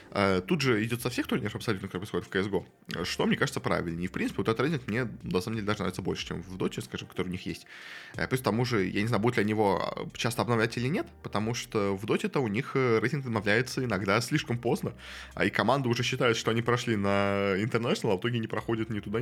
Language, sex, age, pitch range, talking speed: Russian, male, 20-39, 95-120 Hz, 245 wpm